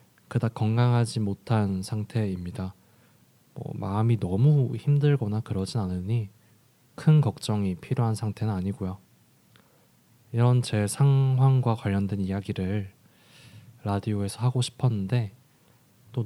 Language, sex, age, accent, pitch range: Korean, male, 20-39, native, 100-125 Hz